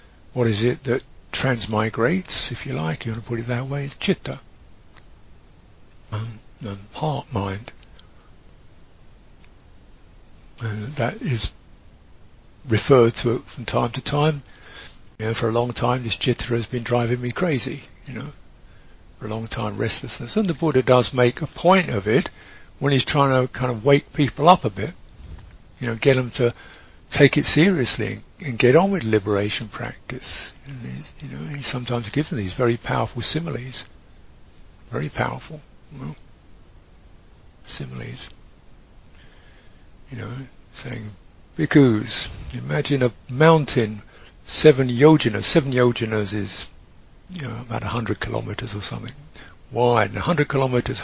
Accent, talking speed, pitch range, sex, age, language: British, 145 wpm, 105-135 Hz, male, 60-79, English